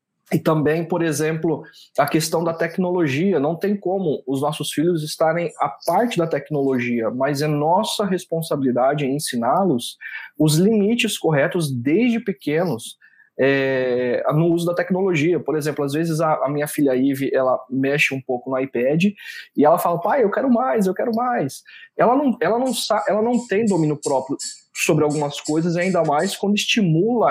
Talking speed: 165 wpm